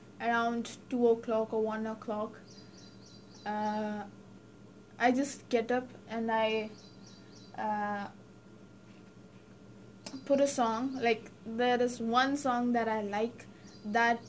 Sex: female